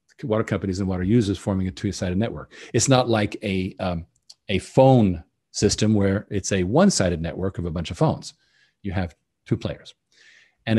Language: English